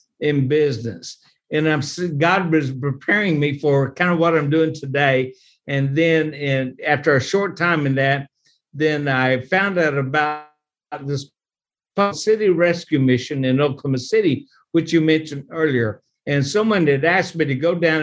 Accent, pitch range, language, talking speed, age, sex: American, 140-175 Hz, English, 160 wpm, 60-79, male